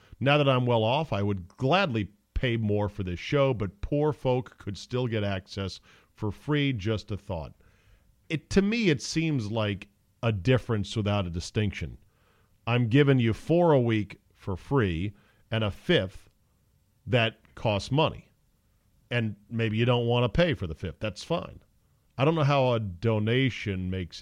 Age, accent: 40-59, American